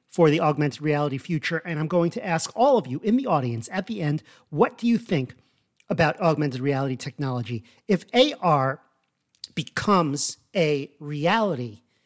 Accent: American